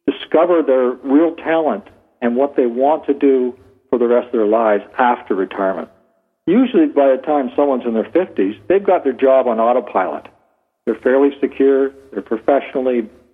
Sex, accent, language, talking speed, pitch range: male, American, English, 165 wpm, 120-160 Hz